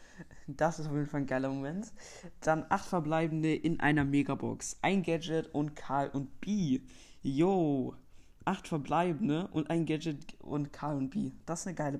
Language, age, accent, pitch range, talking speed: German, 20-39, German, 140-165 Hz, 170 wpm